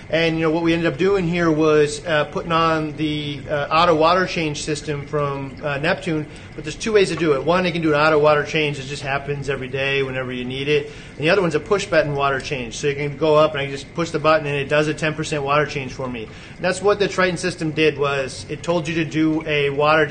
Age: 30-49